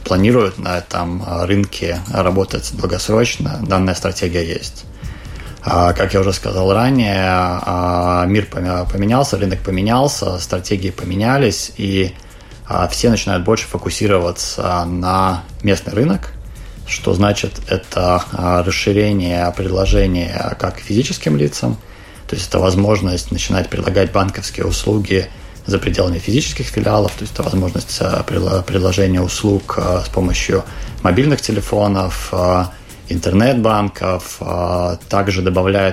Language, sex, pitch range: Russian, male, 90-105 Hz